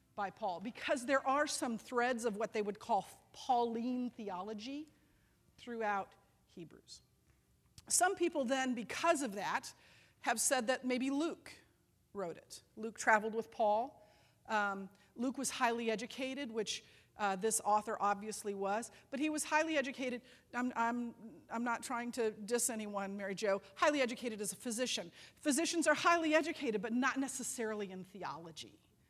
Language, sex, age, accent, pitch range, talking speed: English, female, 40-59, American, 210-260 Hz, 150 wpm